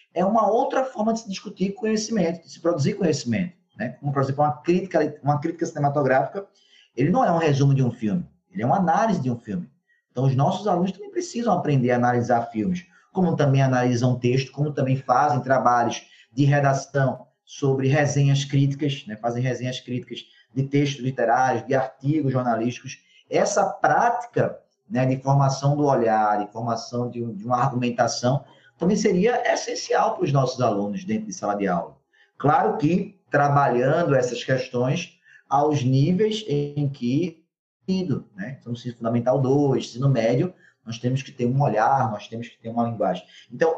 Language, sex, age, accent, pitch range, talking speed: Portuguese, male, 20-39, Brazilian, 125-170 Hz, 170 wpm